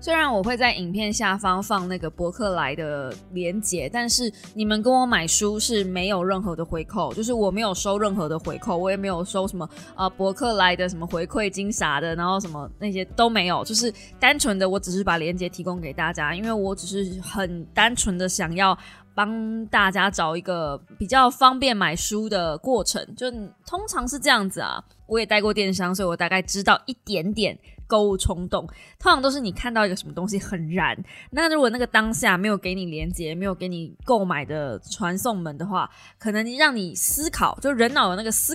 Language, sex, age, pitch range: Chinese, female, 20-39, 180-225 Hz